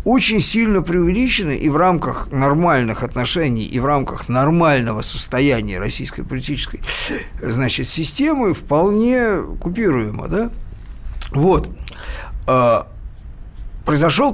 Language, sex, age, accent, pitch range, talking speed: Russian, male, 50-69, native, 120-170 Hz, 90 wpm